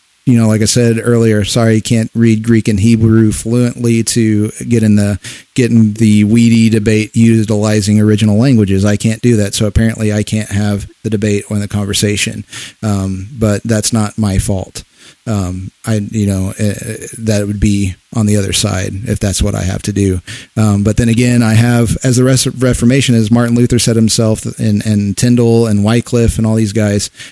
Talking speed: 200 wpm